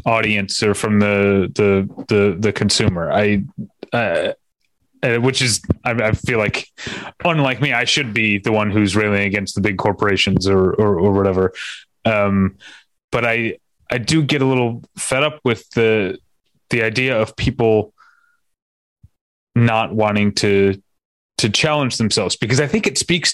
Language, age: English, 30-49